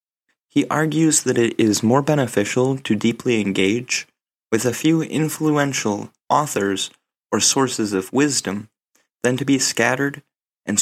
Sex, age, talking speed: male, 20-39, 135 wpm